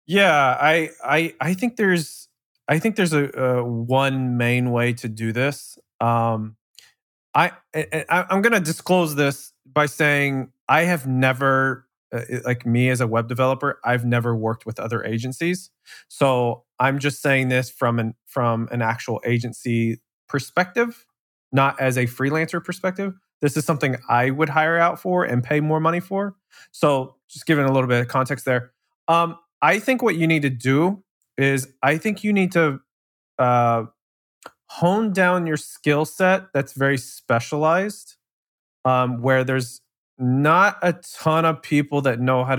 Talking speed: 160 wpm